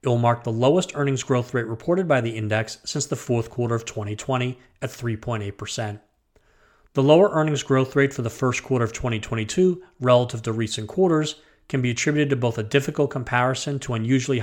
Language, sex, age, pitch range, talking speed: English, male, 40-59, 115-145 Hz, 185 wpm